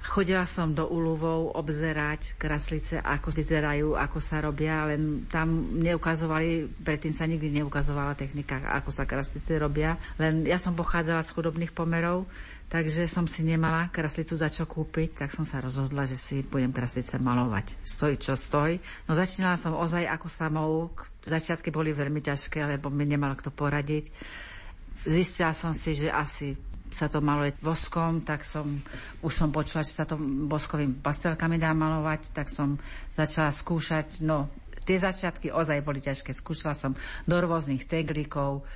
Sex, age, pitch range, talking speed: female, 50-69, 145-165 Hz, 160 wpm